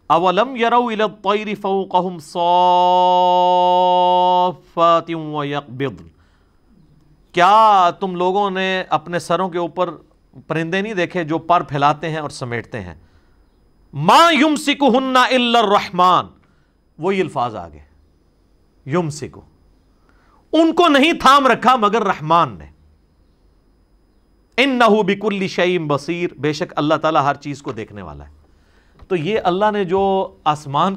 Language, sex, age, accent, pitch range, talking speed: English, male, 50-69, Indian, 145-210 Hz, 85 wpm